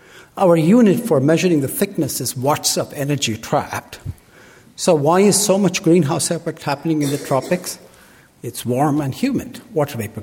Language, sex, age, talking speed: English, male, 60-79, 165 wpm